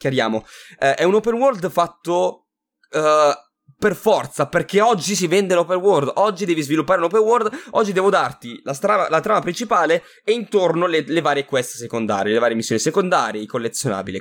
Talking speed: 175 wpm